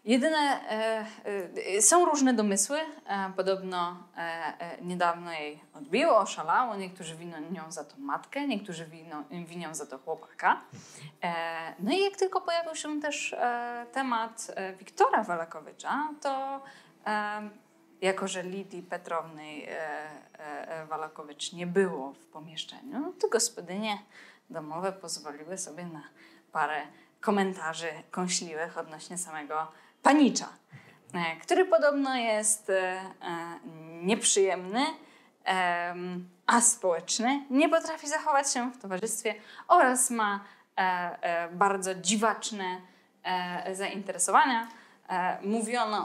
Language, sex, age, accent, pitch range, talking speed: Polish, female, 20-39, native, 175-235 Hz, 105 wpm